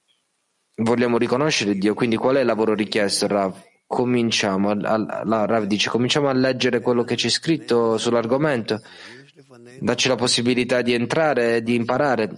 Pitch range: 110-130 Hz